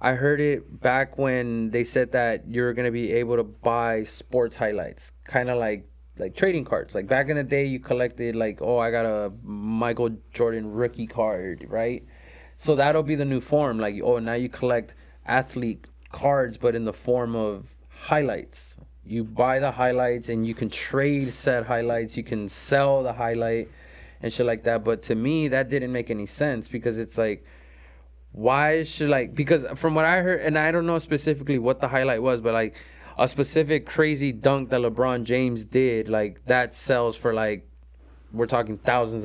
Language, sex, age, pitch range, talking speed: English, male, 20-39, 105-130 Hz, 190 wpm